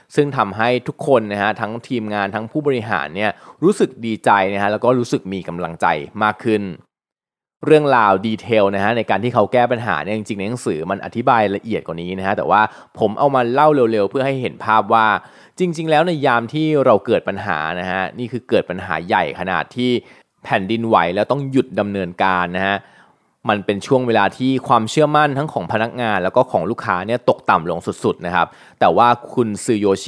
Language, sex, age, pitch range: Thai, male, 20-39, 100-130 Hz